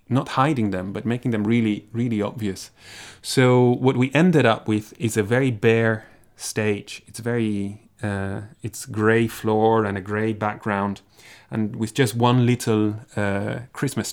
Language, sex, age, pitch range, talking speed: English, male, 30-49, 105-120 Hz, 155 wpm